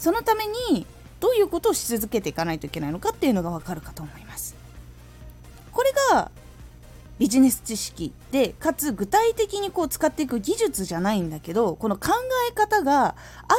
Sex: female